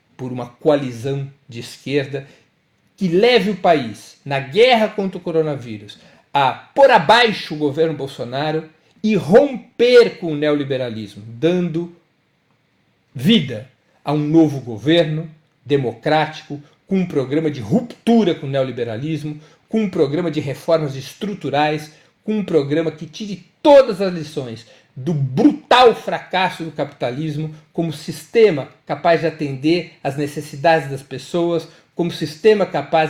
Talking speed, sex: 130 wpm, male